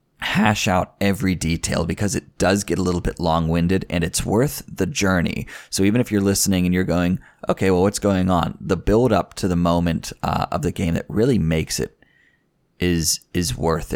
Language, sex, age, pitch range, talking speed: English, male, 20-39, 85-100 Hz, 200 wpm